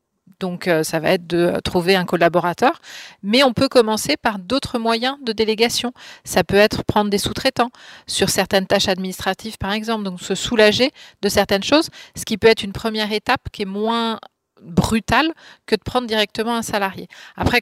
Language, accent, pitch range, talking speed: English, French, 200-240 Hz, 185 wpm